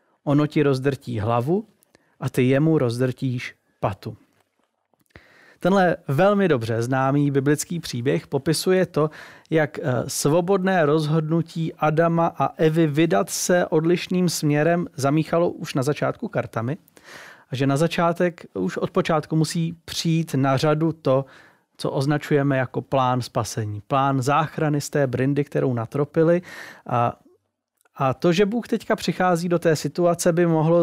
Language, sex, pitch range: Czech, male, 140-170 Hz